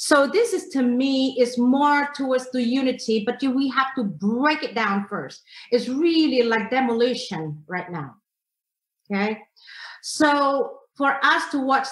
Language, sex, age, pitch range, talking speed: English, female, 40-59, 230-275 Hz, 150 wpm